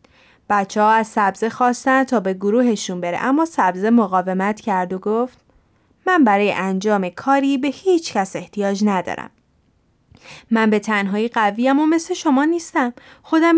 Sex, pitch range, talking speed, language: female, 205-320 Hz, 145 wpm, Persian